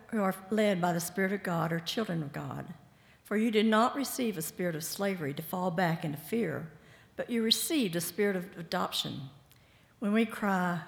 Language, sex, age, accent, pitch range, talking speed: English, female, 60-79, American, 155-200 Hz, 200 wpm